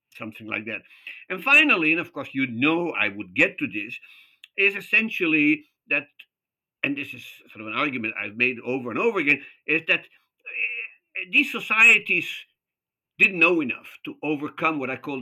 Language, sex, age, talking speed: English, male, 60-79, 170 wpm